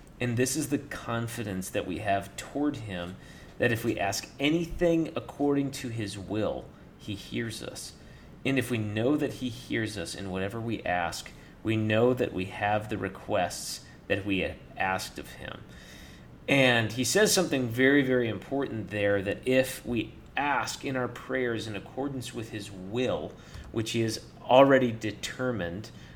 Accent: American